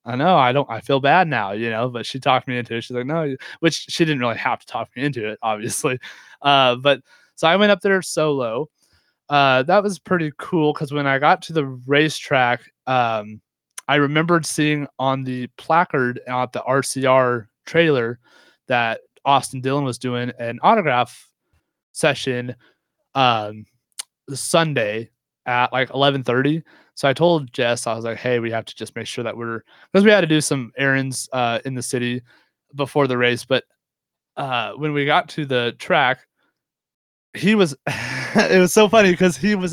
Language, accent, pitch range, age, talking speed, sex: English, American, 120-155 Hz, 20-39, 185 wpm, male